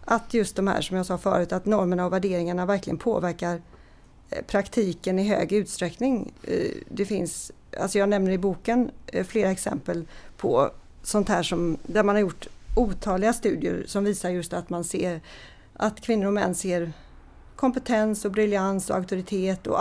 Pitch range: 180-225 Hz